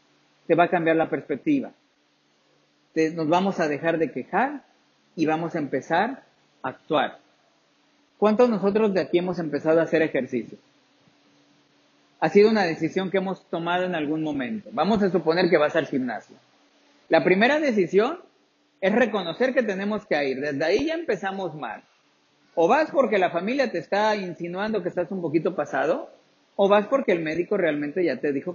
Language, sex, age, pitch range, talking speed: Spanish, male, 50-69, 155-210 Hz, 170 wpm